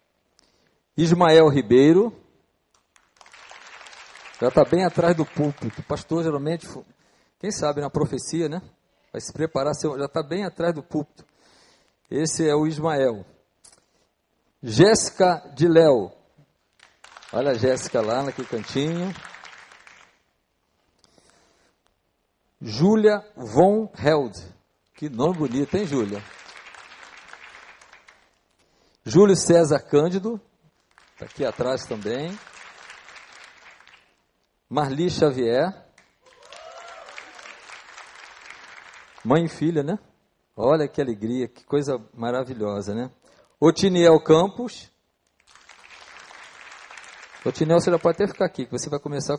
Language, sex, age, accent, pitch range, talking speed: Portuguese, male, 50-69, Brazilian, 130-170 Hz, 95 wpm